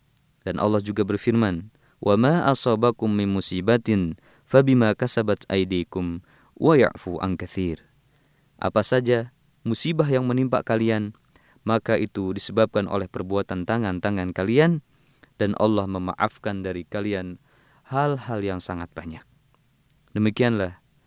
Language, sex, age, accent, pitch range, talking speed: Indonesian, male, 20-39, native, 95-115 Hz, 95 wpm